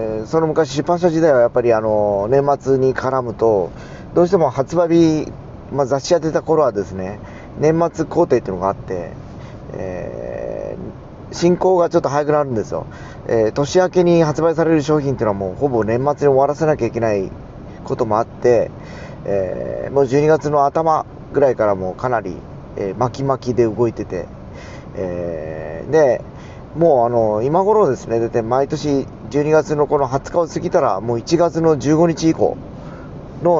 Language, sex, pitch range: Japanese, male, 110-155 Hz